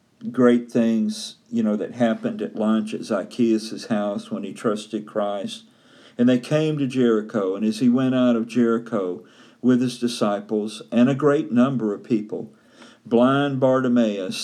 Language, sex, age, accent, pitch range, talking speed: English, male, 50-69, American, 110-155 Hz, 160 wpm